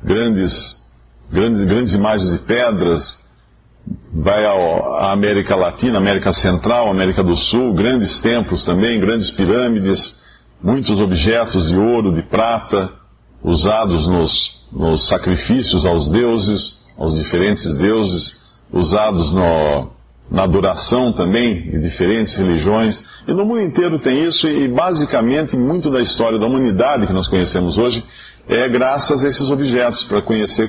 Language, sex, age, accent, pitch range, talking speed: Portuguese, male, 50-69, Brazilian, 90-120 Hz, 135 wpm